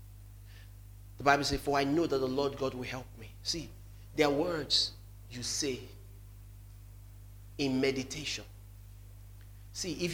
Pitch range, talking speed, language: 100-130 Hz, 135 wpm, English